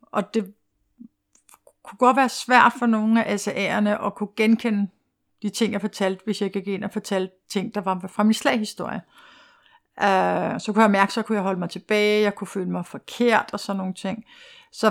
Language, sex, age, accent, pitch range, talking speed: Danish, female, 60-79, native, 195-235 Hz, 200 wpm